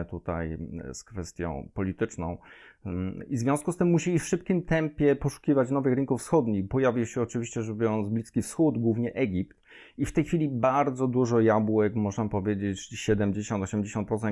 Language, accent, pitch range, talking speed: Polish, native, 100-120 Hz, 150 wpm